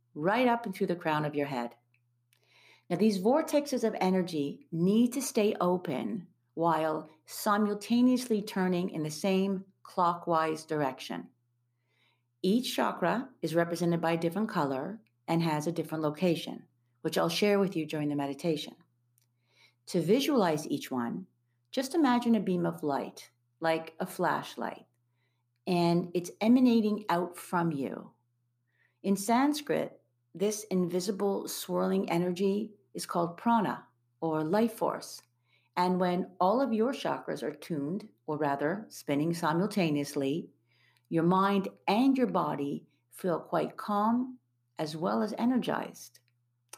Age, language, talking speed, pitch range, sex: 50-69, English, 130 wpm, 140-205 Hz, female